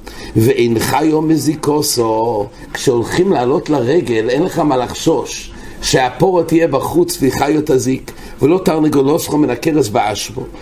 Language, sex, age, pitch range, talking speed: English, male, 60-79, 130-170 Hz, 120 wpm